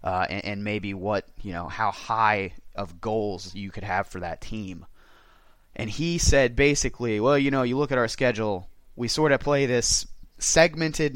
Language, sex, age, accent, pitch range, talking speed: English, male, 30-49, American, 100-130 Hz, 190 wpm